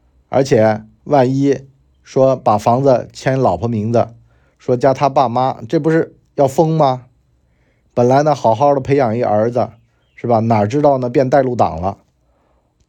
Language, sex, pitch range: Chinese, male, 110-150 Hz